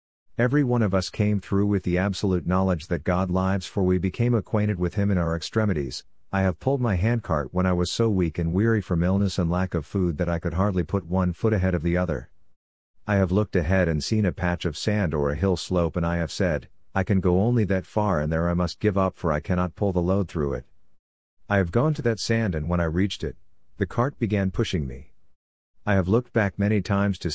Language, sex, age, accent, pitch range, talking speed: English, male, 50-69, American, 85-100 Hz, 245 wpm